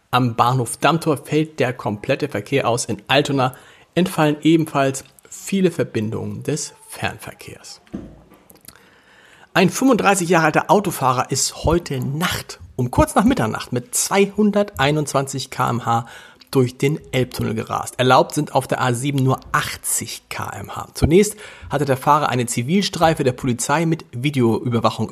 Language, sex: German, male